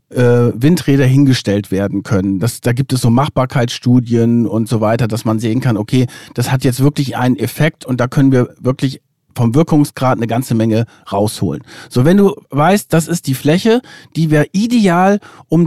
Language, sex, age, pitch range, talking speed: German, male, 50-69, 130-165 Hz, 180 wpm